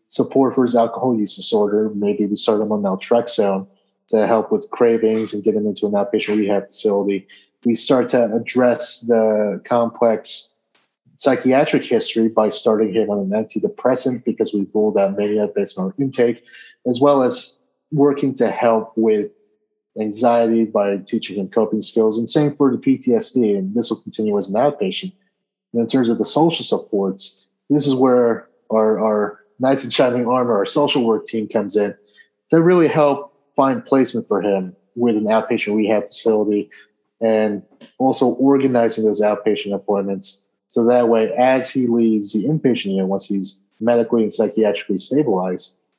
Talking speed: 165 wpm